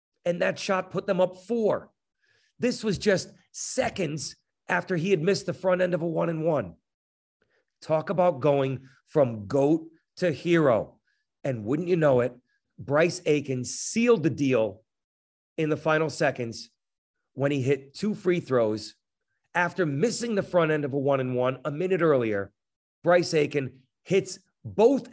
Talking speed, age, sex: 150 wpm, 40-59, male